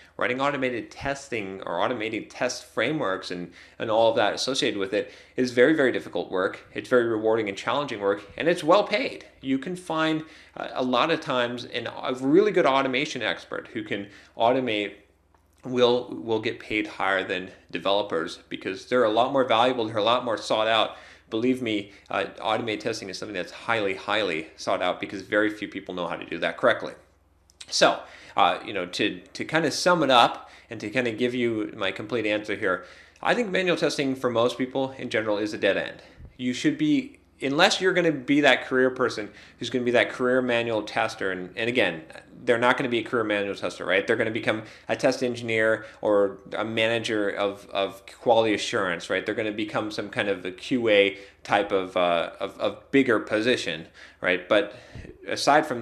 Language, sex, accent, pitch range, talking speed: English, male, American, 100-130 Hz, 205 wpm